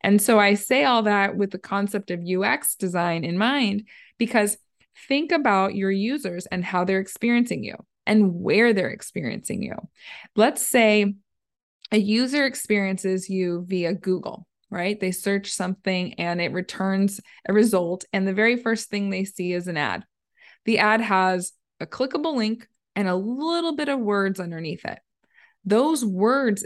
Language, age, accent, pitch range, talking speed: English, 20-39, American, 190-235 Hz, 160 wpm